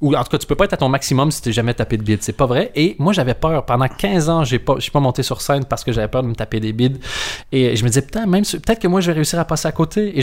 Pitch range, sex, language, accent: 125-170 Hz, male, French, Canadian